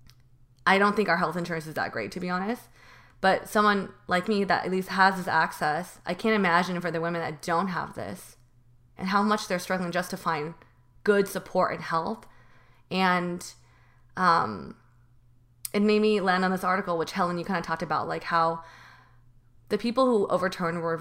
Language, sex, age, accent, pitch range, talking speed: English, female, 20-39, American, 165-210 Hz, 190 wpm